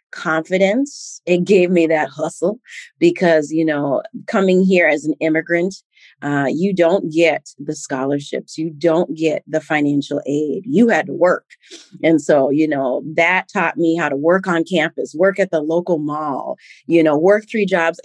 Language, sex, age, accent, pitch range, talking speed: English, female, 40-59, American, 155-205 Hz, 175 wpm